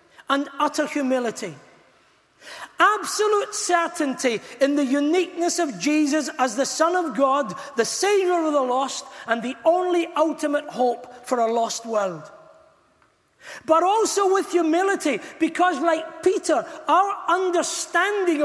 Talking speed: 125 wpm